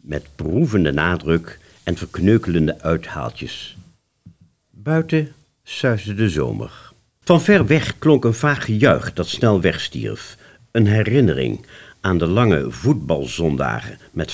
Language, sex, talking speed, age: Dutch, male, 115 wpm, 50-69